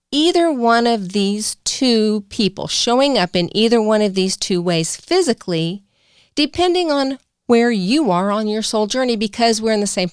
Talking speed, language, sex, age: 180 wpm, English, female, 40-59